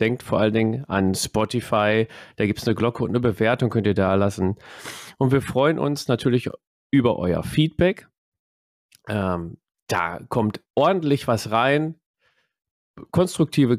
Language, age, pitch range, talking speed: German, 40-59, 110-145 Hz, 145 wpm